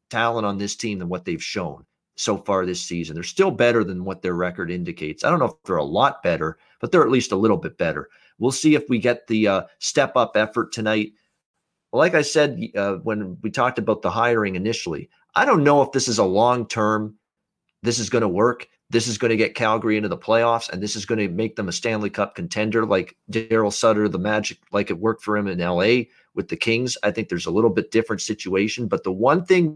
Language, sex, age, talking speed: English, male, 40-59, 235 wpm